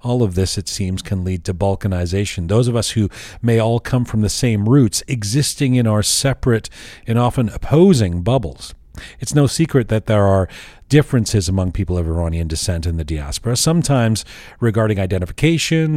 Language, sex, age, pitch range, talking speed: English, male, 40-59, 95-135 Hz, 175 wpm